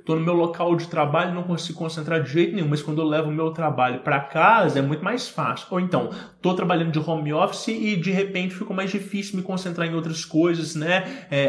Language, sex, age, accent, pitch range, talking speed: English, male, 20-39, Brazilian, 135-190 Hz, 240 wpm